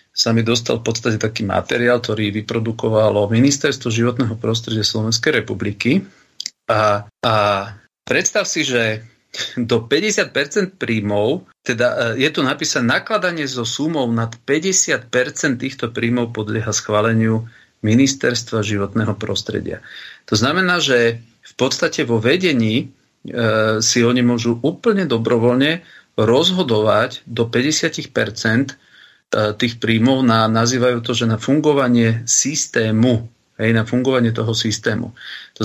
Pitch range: 110-120 Hz